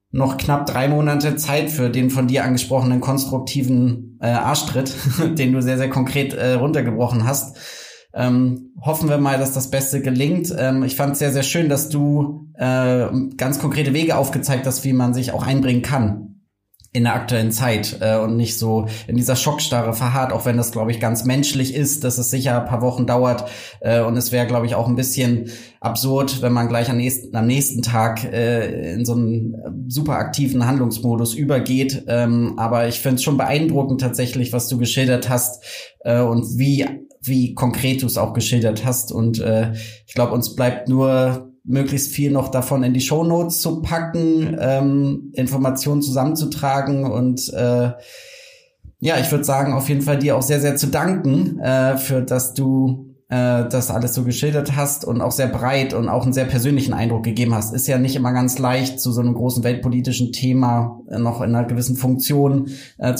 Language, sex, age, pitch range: German, male, 20-39, 120-140 Hz